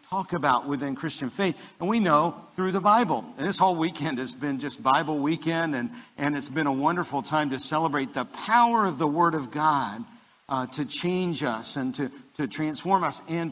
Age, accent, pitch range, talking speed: 50-69, American, 130-170 Hz, 205 wpm